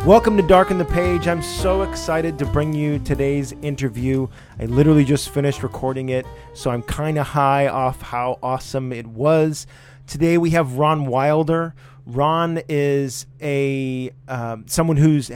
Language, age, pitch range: English, 30-49, 130-155 Hz